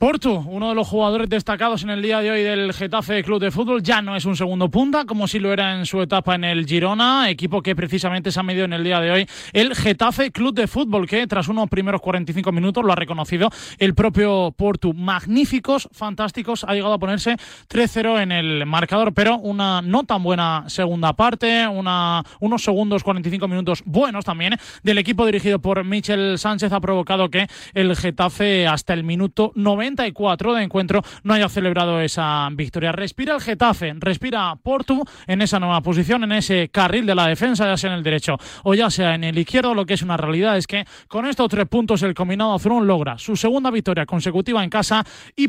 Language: Spanish